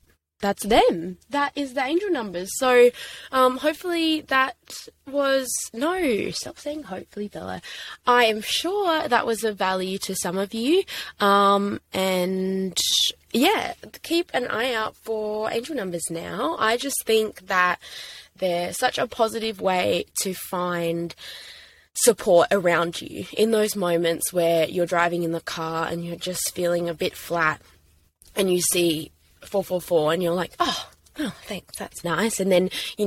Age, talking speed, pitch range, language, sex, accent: 10-29, 150 wpm, 170-230 Hz, English, female, Australian